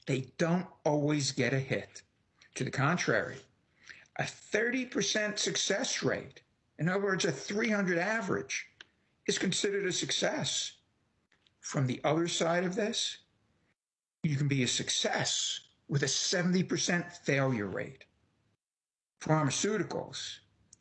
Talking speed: 115 wpm